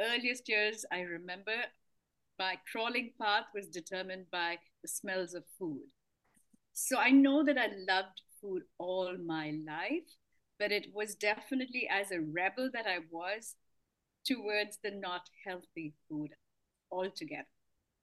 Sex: female